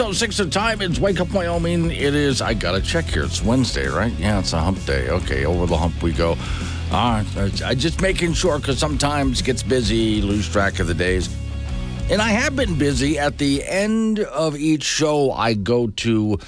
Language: English